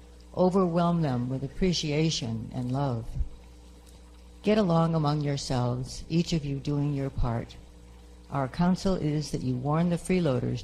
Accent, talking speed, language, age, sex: American, 135 wpm, English, 60-79, female